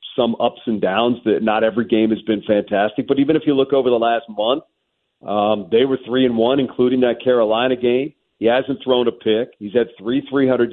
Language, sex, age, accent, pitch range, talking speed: English, male, 40-59, American, 115-145 Hz, 220 wpm